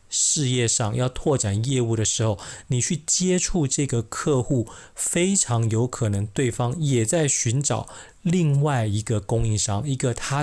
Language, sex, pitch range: Chinese, male, 110-135 Hz